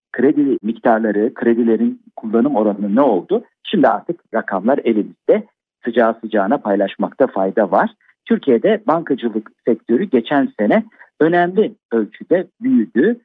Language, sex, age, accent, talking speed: Turkish, male, 50-69, native, 110 wpm